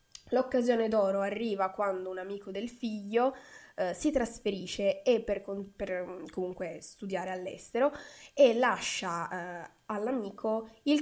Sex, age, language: female, 20-39, Italian